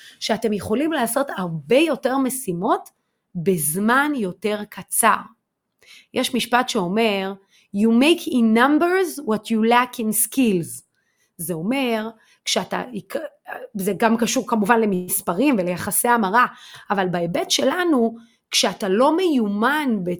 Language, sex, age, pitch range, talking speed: Hebrew, female, 30-49, 205-310 Hz, 110 wpm